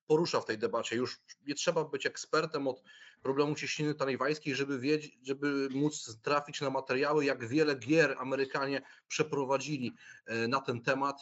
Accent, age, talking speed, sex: native, 30-49, 150 wpm, male